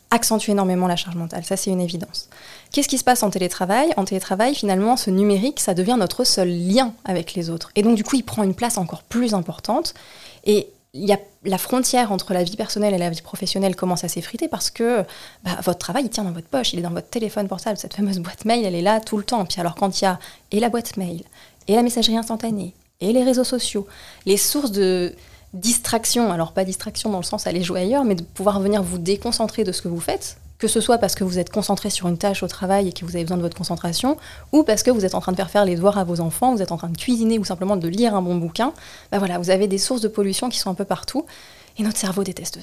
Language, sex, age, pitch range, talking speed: French, female, 20-39, 180-225 Hz, 265 wpm